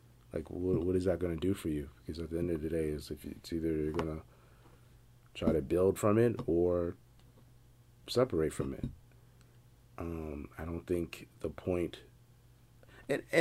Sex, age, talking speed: male, 30-49, 175 wpm